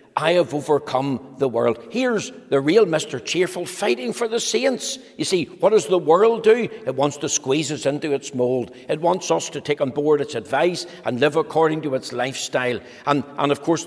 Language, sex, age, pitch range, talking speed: English, male, 60-79, 135-170 Hz, 210 wpm